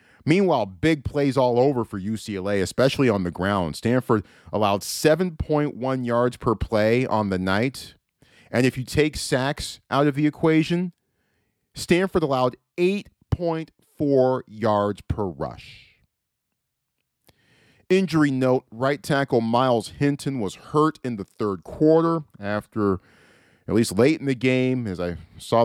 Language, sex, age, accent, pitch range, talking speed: English, male, 40-59, American, 100-135 Hz, 135 wpm